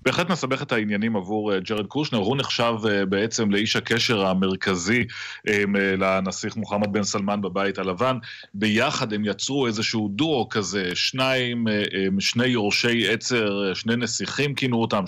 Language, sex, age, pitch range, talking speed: Hebrew, male, 30-49, 100-120 Hz, 130 wpm